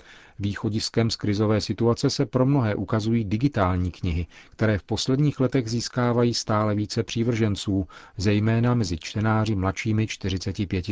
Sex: male